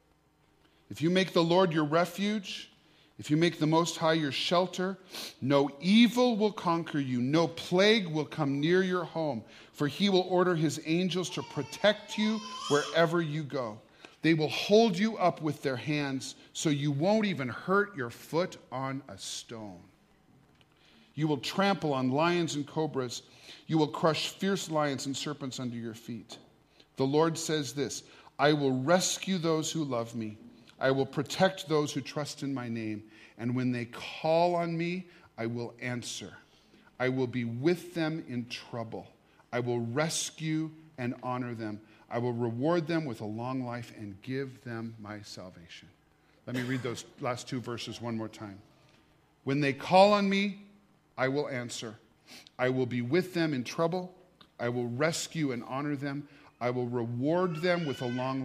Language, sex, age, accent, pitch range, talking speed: English, male, 40-59, American, 120-170 Hz, 170 wpm